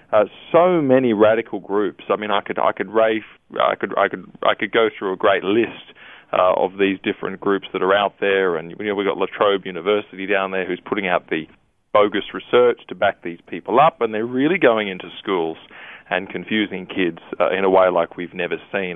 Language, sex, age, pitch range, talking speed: English, male, 20-39, 95-120 Hz, 220 wpm